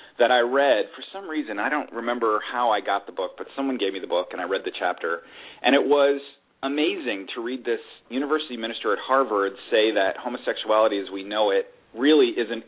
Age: 40-59